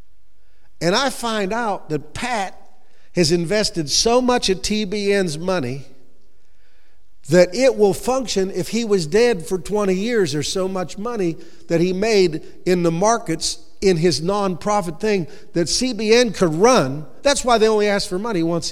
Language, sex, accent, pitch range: English, male, American, 165-210 Hz